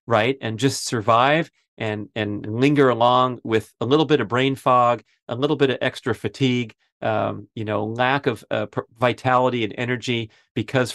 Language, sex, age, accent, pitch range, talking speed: English, male, 40-59, American, 110-130 Hz, 170 wpm